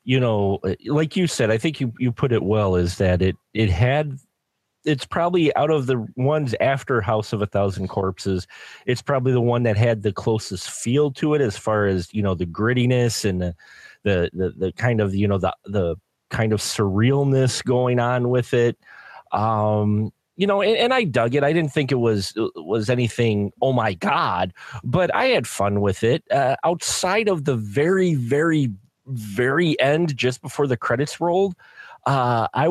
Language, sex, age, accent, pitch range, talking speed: English, male, 30-49, American, 105-140 Hz, 190 wpm